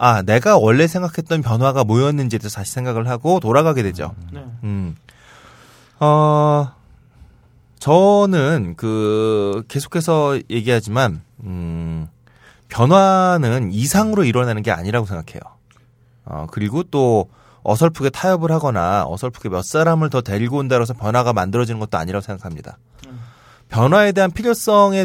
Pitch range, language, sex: 110-165 Hz, Korean, male